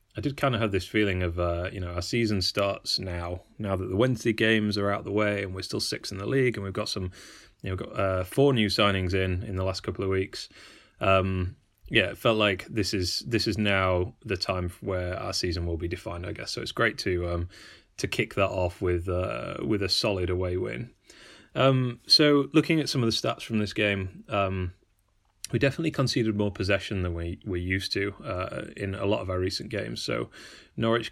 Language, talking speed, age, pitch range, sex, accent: English, 230 wpm, 30-49, 95-115 Hz, male, British